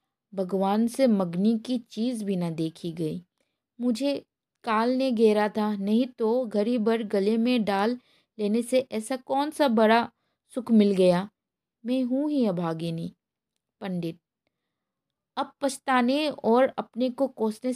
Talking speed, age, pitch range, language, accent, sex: 140 wpm, 20-39, 200-255 Hz, Hindi, native, female